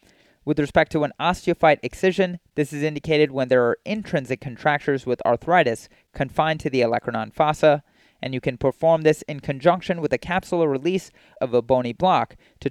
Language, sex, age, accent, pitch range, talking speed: English, male, 30-49, American, 130-165 Hz, 175 wpm